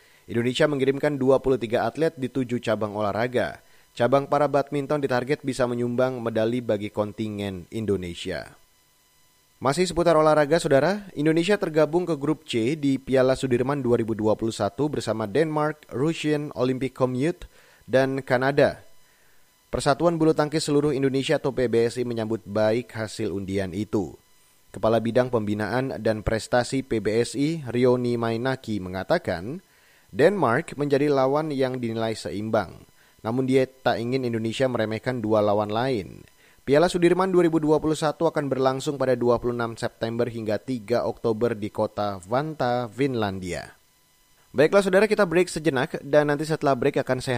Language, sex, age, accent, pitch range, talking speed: Indonesian, male, 30-49, native, 110-145 Hz, 130 wpm